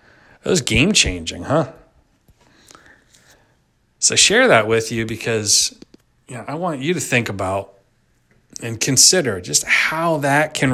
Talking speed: 135 wpm